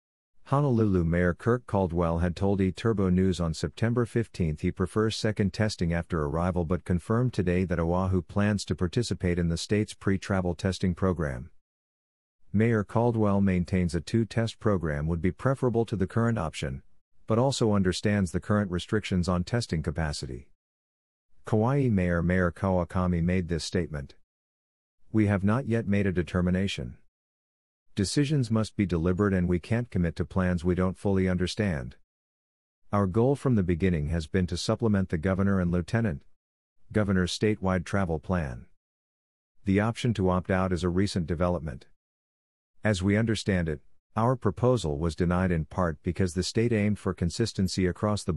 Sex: male